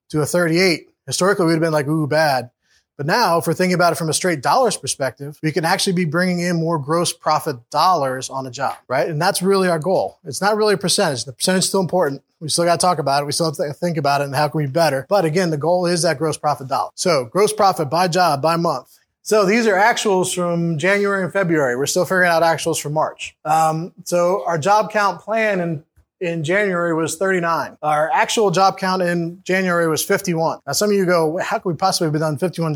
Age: 20-39